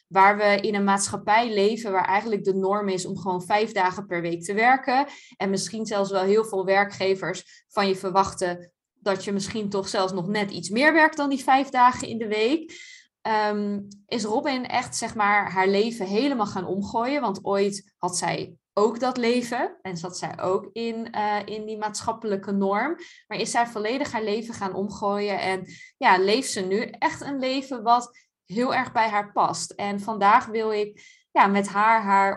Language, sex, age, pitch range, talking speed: Dutch, female, 20-39, 195-235 Hz, 195 wpm